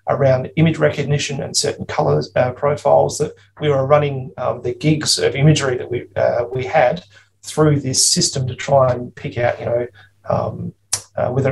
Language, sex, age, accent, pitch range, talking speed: English, male, 30-49, Australian, 125-145 Hz, 180 wpm